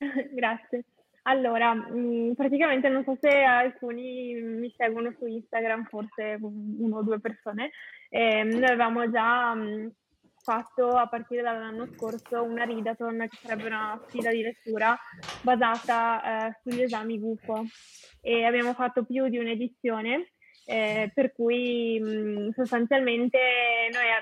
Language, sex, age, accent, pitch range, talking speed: Italian, female, 10-29, native, 220-245 Hz, 120 wpm